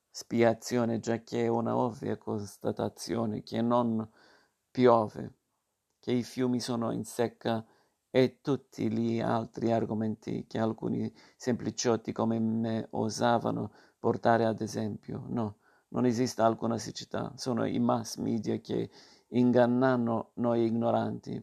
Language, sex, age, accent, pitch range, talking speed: Italian, male, 50-69, native, 115-125 Hz, 120 wpm